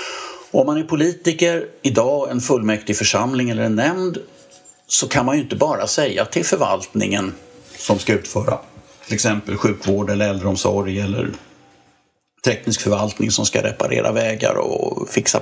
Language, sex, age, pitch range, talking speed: English, male, 50-69, 105-140 Hz, 150 wpm